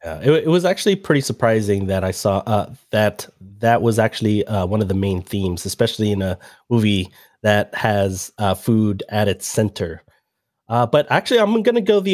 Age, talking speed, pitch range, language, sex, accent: 30-49, 205 wpm, 110-135 Hz, English, male, American